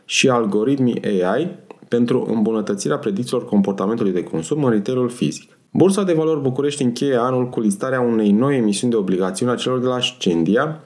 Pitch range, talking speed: 110-150 Hz, 165 wpm